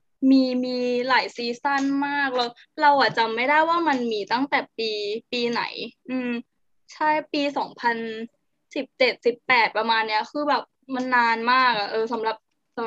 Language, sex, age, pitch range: Thai, female, 10-29, 235-285 Hz